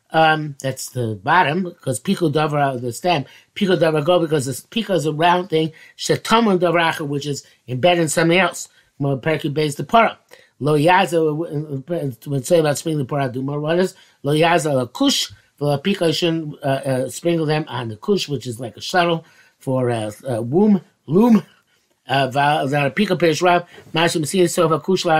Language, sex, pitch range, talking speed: English, male, 135-175 Hz, 160 wpm